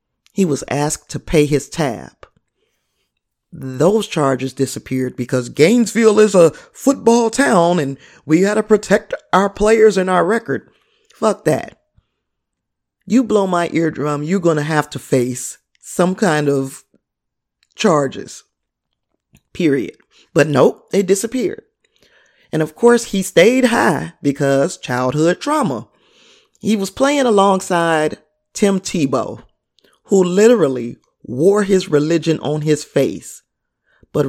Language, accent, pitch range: English, American, 140-200 Hz